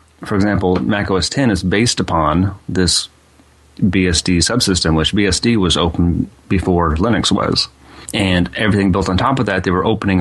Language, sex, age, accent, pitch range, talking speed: English, male, 30-49, American, 85-100 Hz, 160 wpm